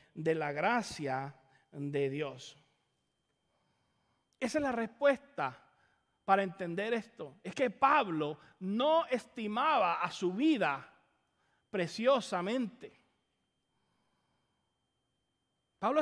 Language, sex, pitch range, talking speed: English, male, 195-270 Hz, 80 wpm